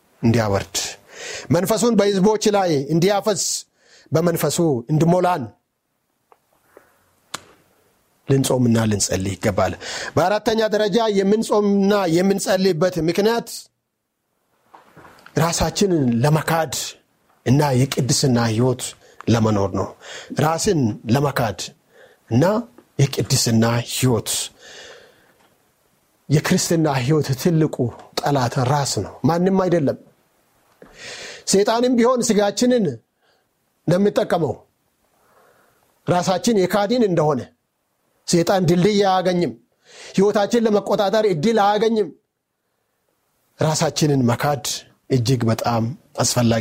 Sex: male